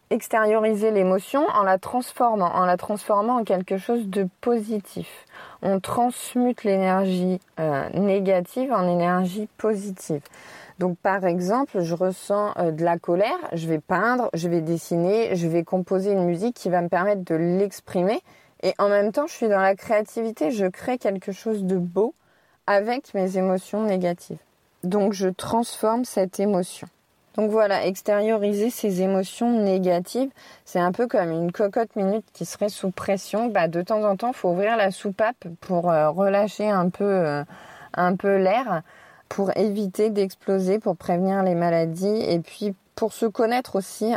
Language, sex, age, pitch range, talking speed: French, female, 20-39, 180-210 Hz, 160 wpm